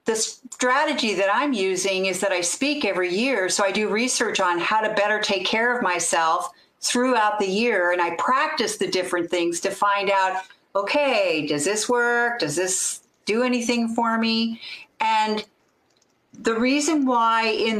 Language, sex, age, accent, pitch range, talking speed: English, female, 50-69, American, 185-230 Hz, 170 wpm